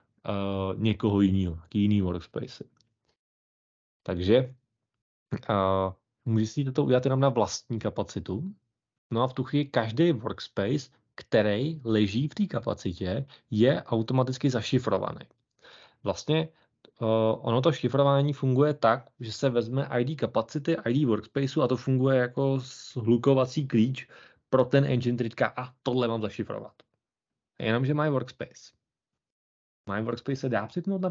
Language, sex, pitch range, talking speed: Czech, male, 110-140 Hz, 130 wpm